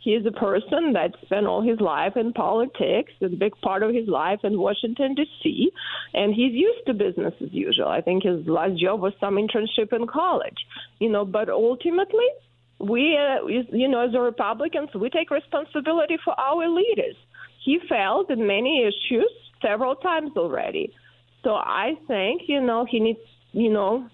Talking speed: 175 wpm